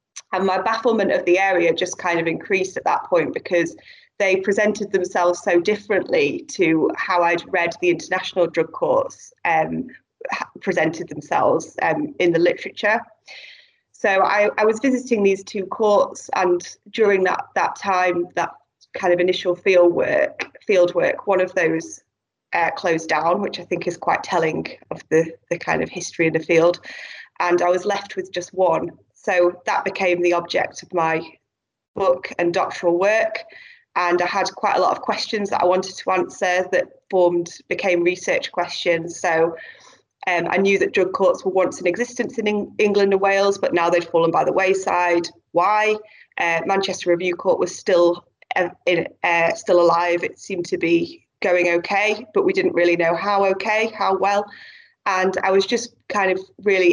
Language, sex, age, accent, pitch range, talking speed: English, female, 20-39, British, 175-205 Hz, 175 wpm